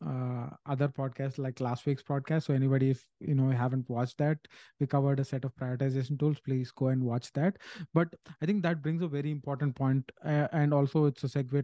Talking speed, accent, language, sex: 220 wpm, Indian, English, male